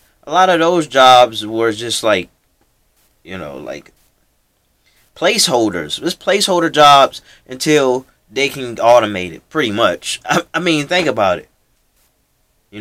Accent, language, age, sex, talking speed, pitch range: American, English, 20-39, male, 135 wpm, 95-130 Hz